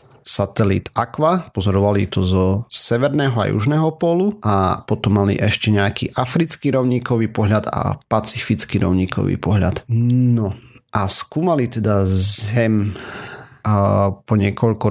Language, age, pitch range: Slovak, 40-59, 100-130 Hz